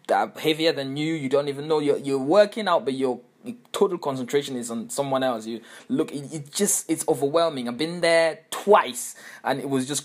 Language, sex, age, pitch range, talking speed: English, male, 20-39, 130-200 Hz, 205 wpm